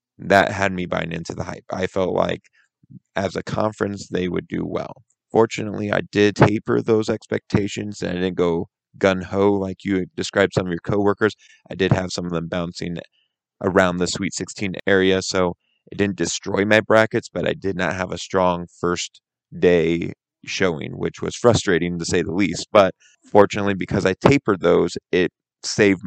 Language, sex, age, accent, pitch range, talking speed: English, male, 30-49, American, 90-100 Hz, 185 wpm